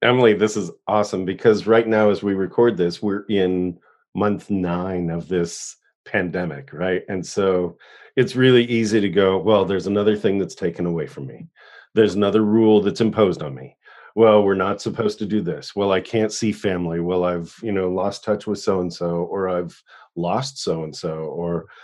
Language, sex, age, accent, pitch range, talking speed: English, male, 40-59, American, 90-110 Hz, 195 wpm